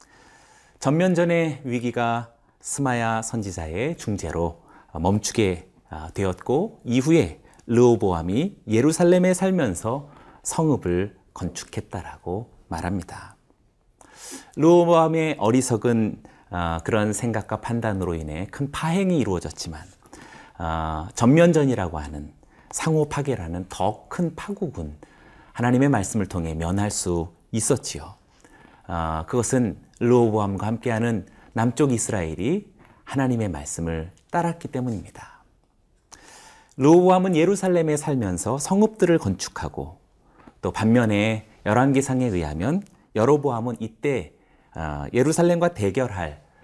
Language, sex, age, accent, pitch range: Korean, male, 40-59, native, 95-150 Hz